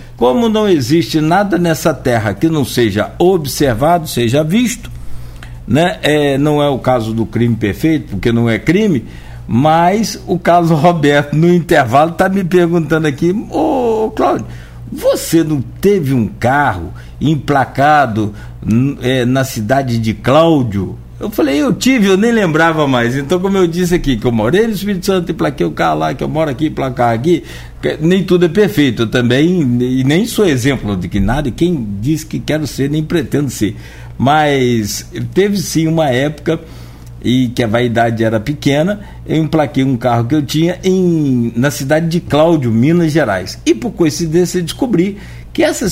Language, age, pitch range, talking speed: Portuguese, 60-79, 120-170 Hz, 175 wpm